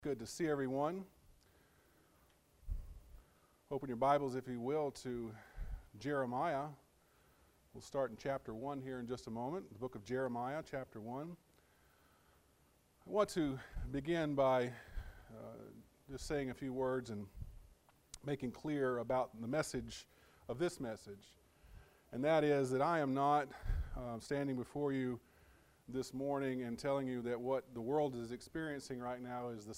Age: 40-59